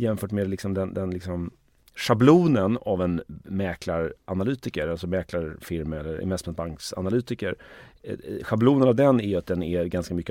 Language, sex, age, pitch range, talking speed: Swedish, male, 30-49, 90-110 Hz, 135 wpm